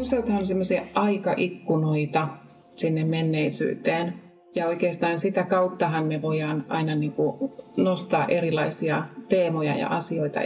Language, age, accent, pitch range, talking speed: Finnish, 30-49, native, 155-185 Hz, 105 wpm